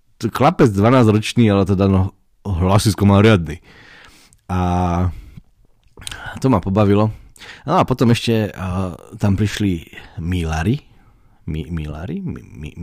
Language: Slovak